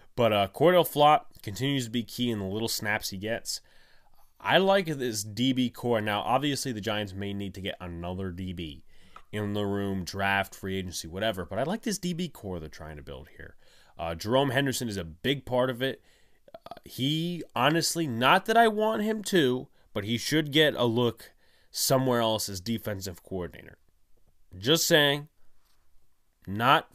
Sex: male